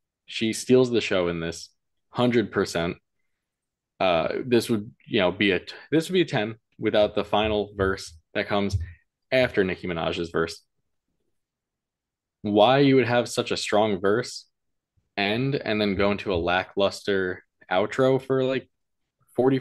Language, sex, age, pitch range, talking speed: English, male, 20-39, 95-130 Hz, 150 wpm